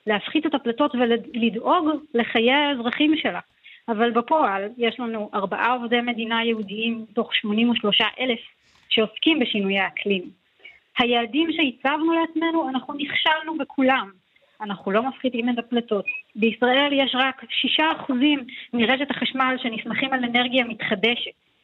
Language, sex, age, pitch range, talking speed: Hebrew, female, 20-39, 225-285 Hz, 115 wpm